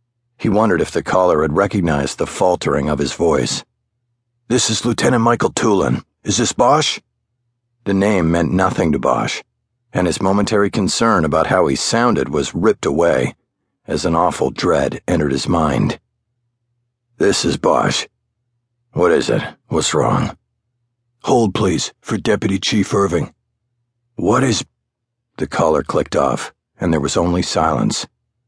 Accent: American